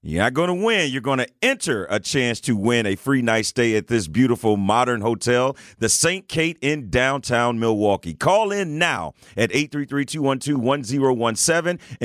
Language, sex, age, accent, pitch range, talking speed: English, male, 40-59, American, 115-160 Hz, 165 wpm